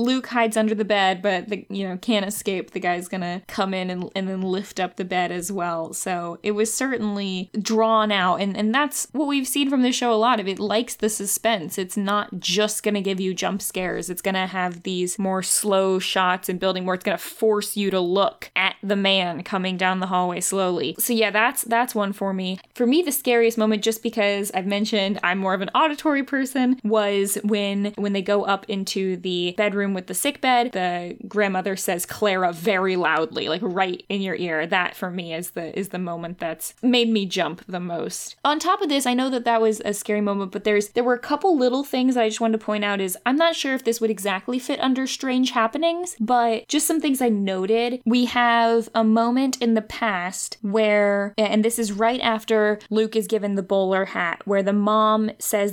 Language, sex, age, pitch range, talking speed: English, female, 10-29, 190-230 Hz, 220 wpm